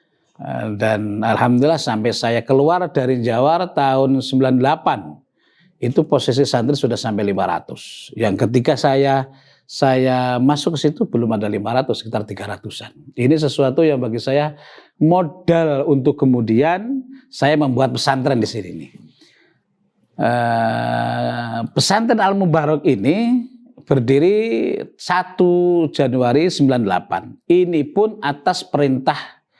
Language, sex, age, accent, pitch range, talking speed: Indonesian, male, 50-69, native, 115-145 Hz, 110 wpm